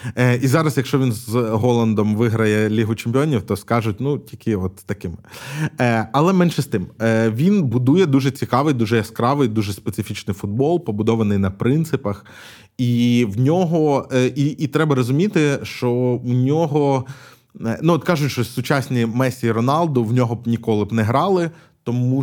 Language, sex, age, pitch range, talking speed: Ukrainian, male, 20-39, 115-145 Hz, 150 wpm